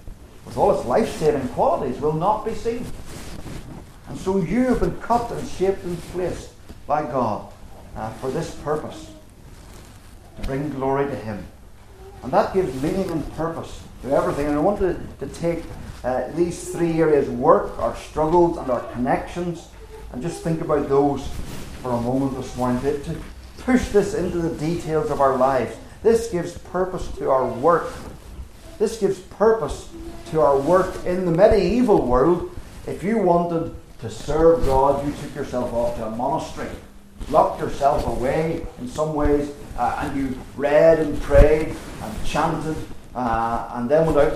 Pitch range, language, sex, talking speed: 125-175 Hz, English, male, 160 wpm